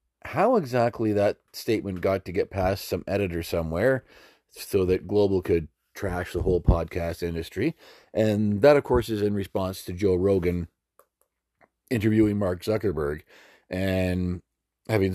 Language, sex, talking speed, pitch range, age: English, male, 140 wpm, 90-110 Hz, 40-59